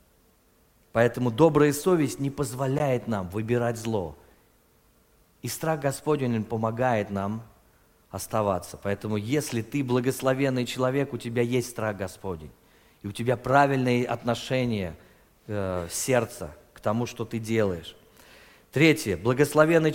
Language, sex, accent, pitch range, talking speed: Russian, male, native, 110-165 Hz, 115 wpm